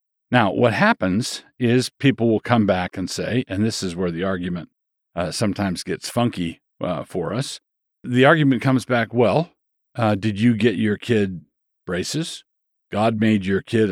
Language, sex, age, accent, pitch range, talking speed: English, male, 50-69, American, 100-125 Hz, 170 wpm